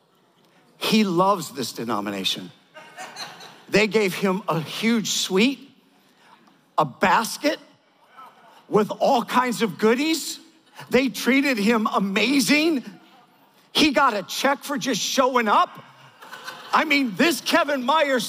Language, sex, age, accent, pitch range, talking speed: English, male, 50-69, American, 220-285 Hz, 110 wpm